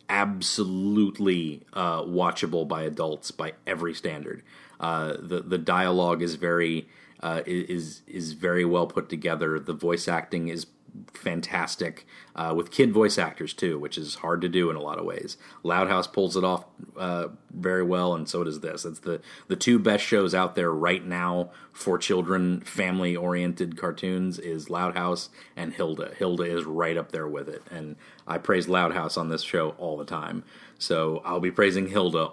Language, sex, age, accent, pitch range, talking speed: English, male, 30-49, American, 85-95 Hz, 180 wpm